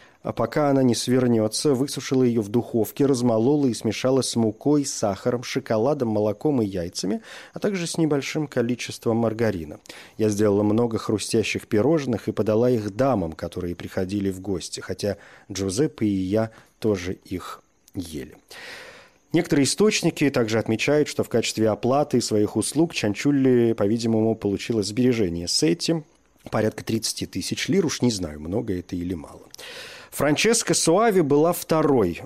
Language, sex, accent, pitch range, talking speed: Russian, male, native, 105-145 Hz, 140 wpm